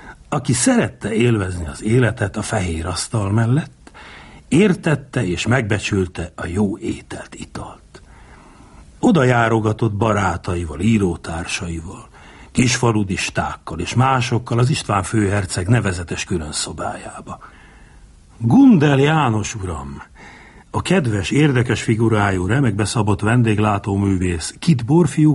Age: 60-79